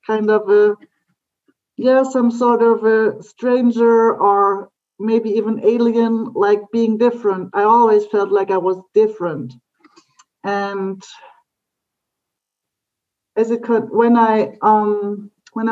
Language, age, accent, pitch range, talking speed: English, 40-59, German, 200-230 Hz, 120 wpm